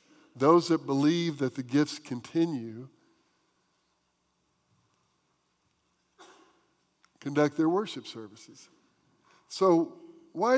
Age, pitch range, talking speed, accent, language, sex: 50-69, 140-200 Hz, 75 wpm, American, English, male